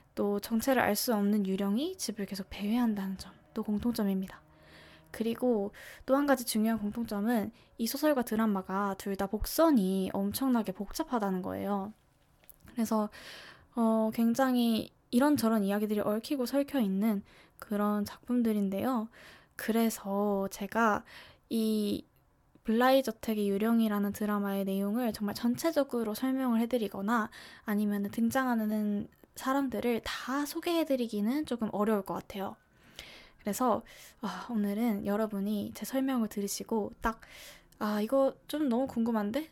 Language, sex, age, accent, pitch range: Korean, female, 10-29, native, 205-255 Hz